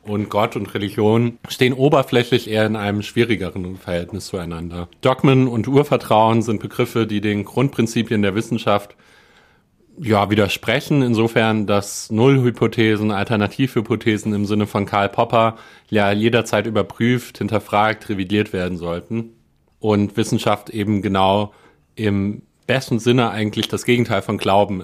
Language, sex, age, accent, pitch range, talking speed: German, male, 30-49, German, 100-115 Hz, 125 wpm